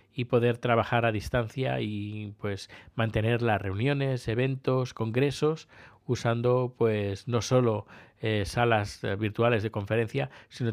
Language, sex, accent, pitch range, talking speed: Spanish, male, Spanish, 105-120 Hz, 125 wpm